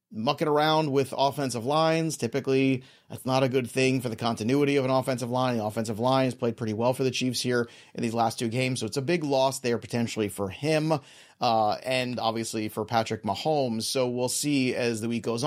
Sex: male